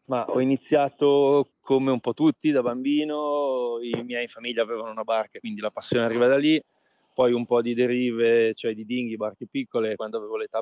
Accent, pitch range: native, 110-130 Hz